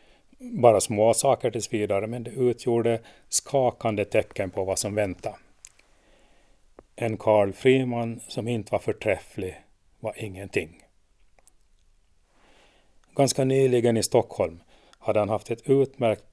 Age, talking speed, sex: 30-49, 120 wpm, male